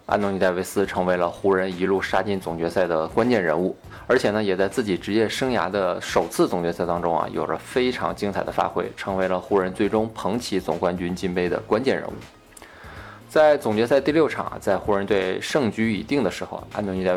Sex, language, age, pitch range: male, Chinese, 20-39, 95-115 Hz